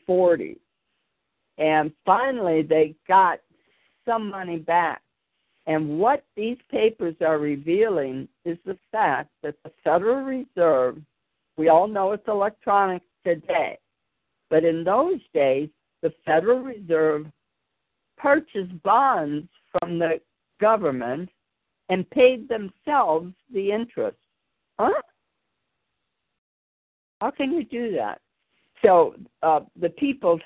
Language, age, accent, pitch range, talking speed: English, 60-79, American, 155-200 Hz, 105 wpm